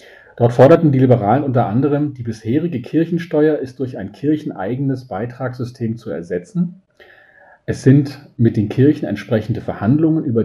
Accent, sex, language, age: German, male, German, 40-59